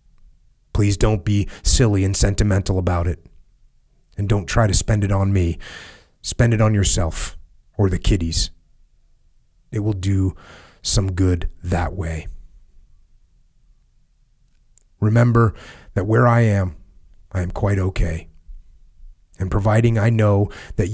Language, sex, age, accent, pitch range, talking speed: English, male, 30-49, American, 80-100 Hz, 125 wpm